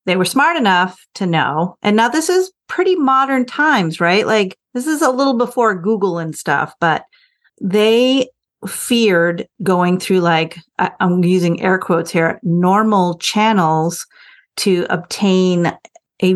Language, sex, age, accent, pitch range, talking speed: English, female, 40-59, American, 165-200 Hz, 145 wpm